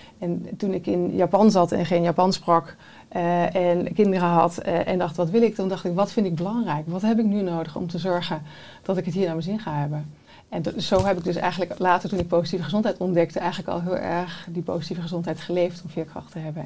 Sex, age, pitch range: female, 30-49, 170-195 Hz